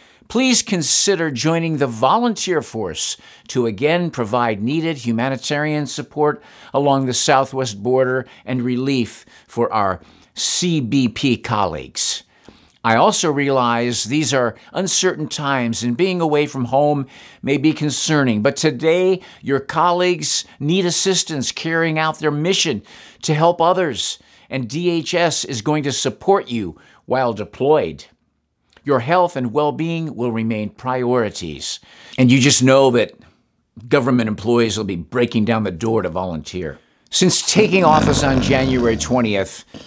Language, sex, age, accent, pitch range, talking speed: English, male, 50-69, American, 115-155 Hz, 130 wpm